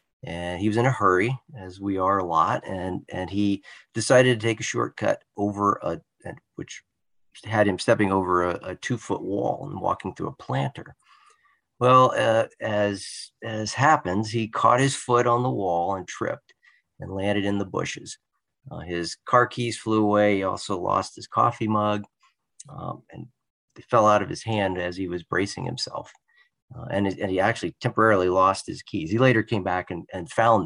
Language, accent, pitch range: English, American, 95-115 Hz